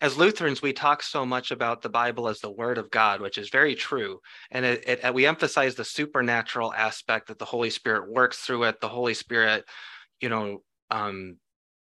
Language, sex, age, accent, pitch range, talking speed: English, male, 30-49, American, 110-130 Hz, 185 wpm